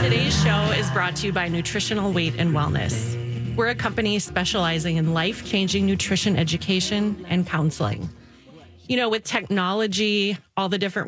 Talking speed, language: 155 wpm, English